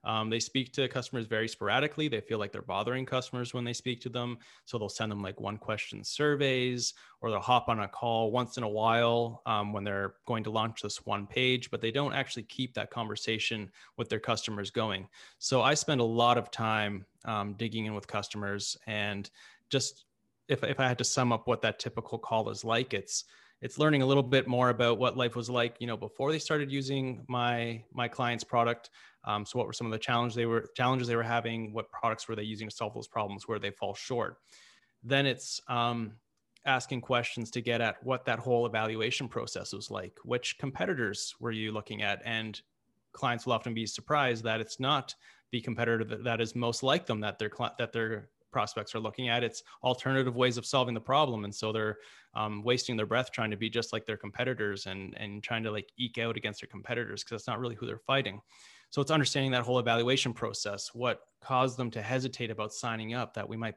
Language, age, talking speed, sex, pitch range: English, 20-39, 215 wpm, male, 110-125 Hz